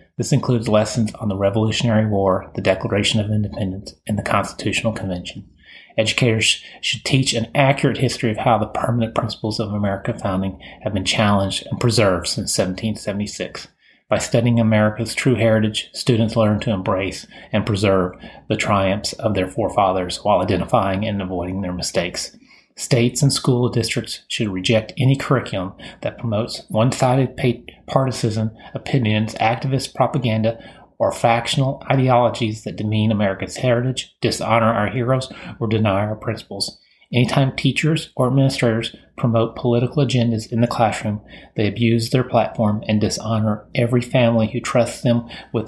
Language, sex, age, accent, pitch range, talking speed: English, male, 30-49, American, 105-125 Hz, 145 wpm